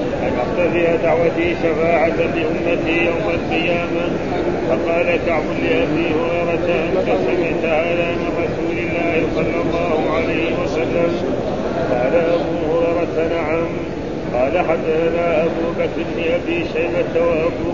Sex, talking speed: male, 110 wpm